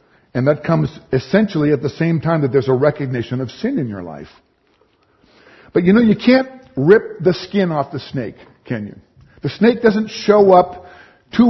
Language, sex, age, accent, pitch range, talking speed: English, male, 50-69, American, 105-145 Hz, 190 wpm